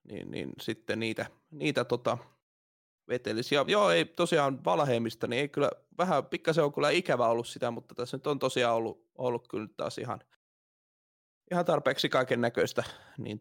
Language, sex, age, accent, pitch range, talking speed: Finnish, male, 20-39, native, 115-145 Hz, 160 wpm